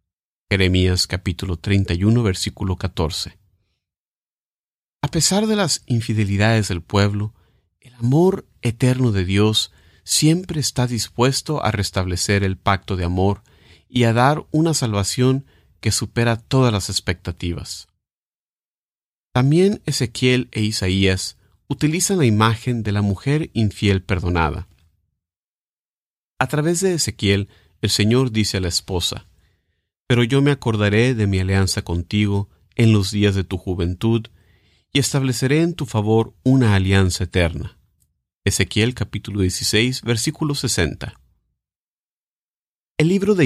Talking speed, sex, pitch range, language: 120 wpm, male, 95-125 Hz, English